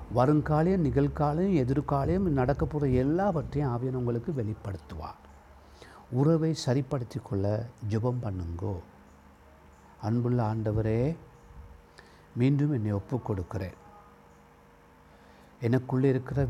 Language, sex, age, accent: Tamil, male, 60-79, native